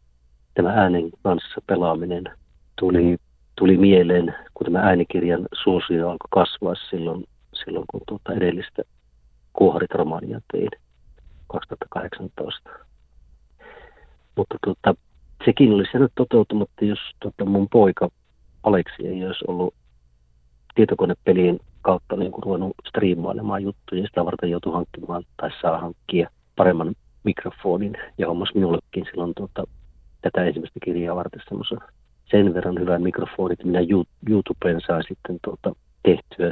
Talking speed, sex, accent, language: 115 wpm, male, native, Finnish